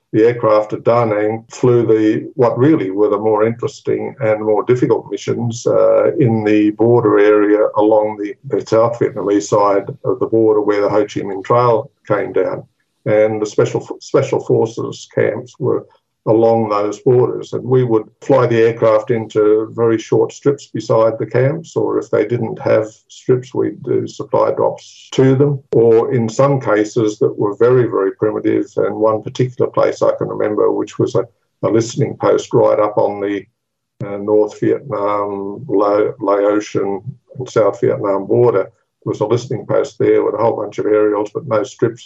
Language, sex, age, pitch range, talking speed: English, male, 50-69, 105-140 Hz, 175 wpm